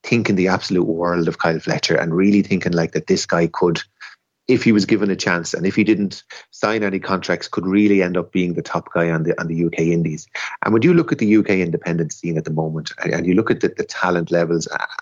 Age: 30-49